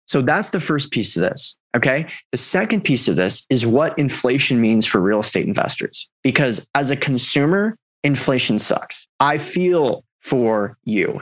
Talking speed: 165 wpm